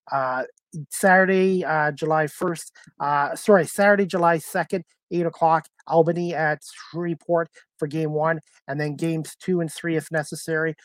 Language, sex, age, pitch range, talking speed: English, male, 30-49, 150-175 Hz, 145 wpm